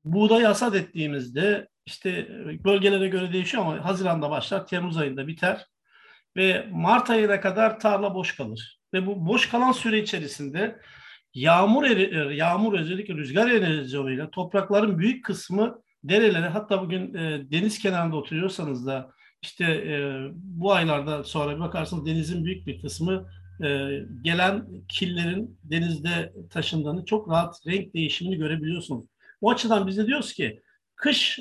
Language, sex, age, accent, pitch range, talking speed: Turkish, male, 50-69, native, 160-215 Hz, 125 wpm